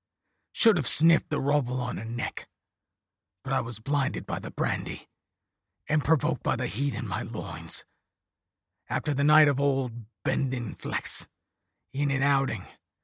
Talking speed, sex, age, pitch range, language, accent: 150 wpm, male, 40-59, 95-145 Hz, English, American